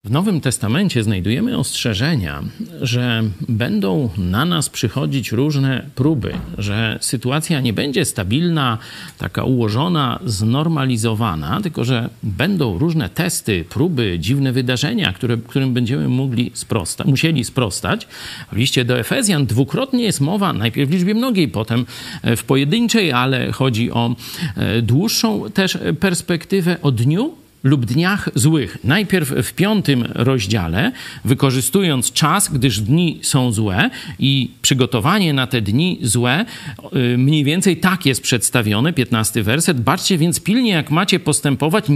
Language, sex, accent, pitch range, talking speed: Polish, male, native, 120-165 Hz, 125 wpm